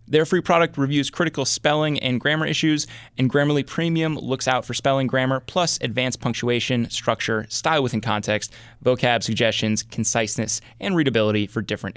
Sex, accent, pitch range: male, American, 110-135 Hz